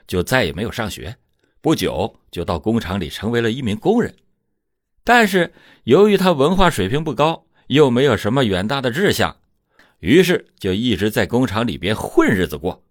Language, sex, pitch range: Chinese, male, 100-150 Hz